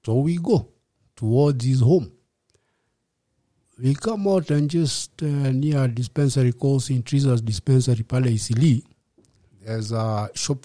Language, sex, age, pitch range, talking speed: English, male, 60-79, 115-150 Hz, 125 wpm